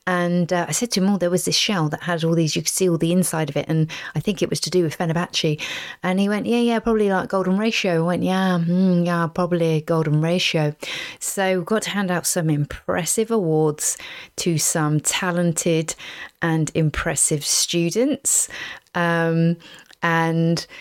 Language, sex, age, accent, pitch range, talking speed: English, female, 30-49, British, 160-190 Hz, 195 wpm